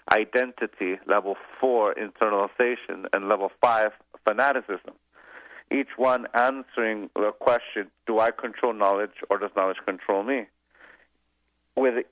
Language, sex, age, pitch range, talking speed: English, male, 40-59, 100-125 Hz, 115 wpm